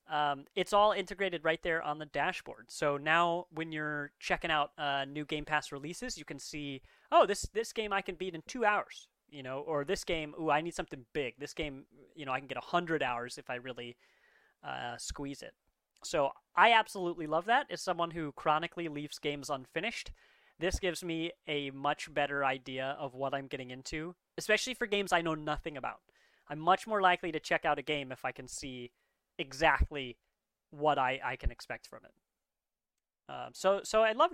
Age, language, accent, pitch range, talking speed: 30-49, English, American, 145-185 Hz, 200 wpm